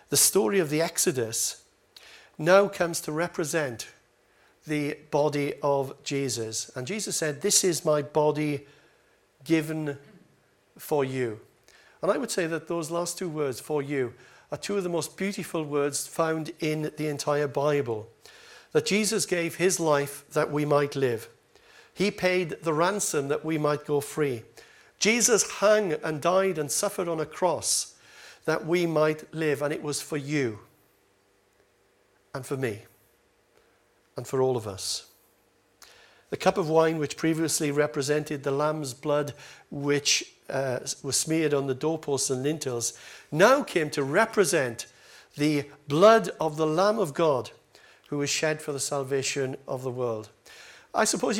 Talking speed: 155 wpm